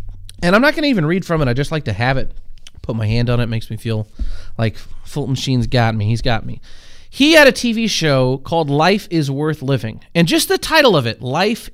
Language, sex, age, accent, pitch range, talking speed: English, male, 30-49, American, 120-190 Hz, 250 wpm